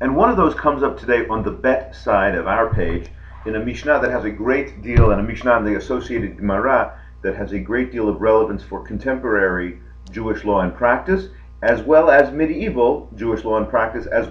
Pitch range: 95-130 Hz